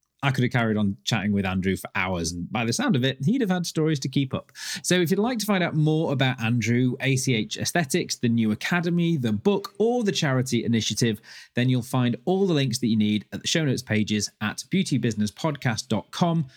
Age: 30-49